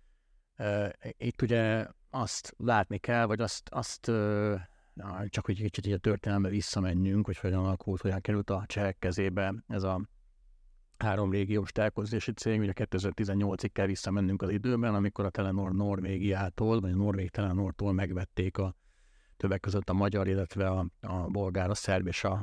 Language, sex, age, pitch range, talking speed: Hungarian, male, 50-69, 95-105 Hz, 155 wpm